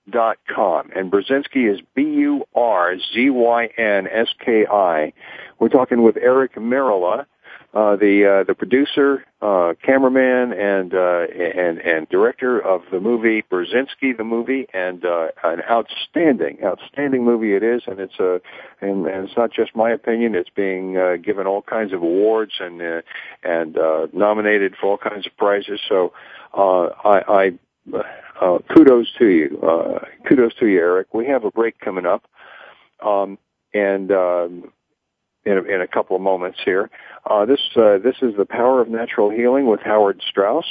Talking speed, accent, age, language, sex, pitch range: 170 wpm, American, 50-69, English, male, 95-125 Hz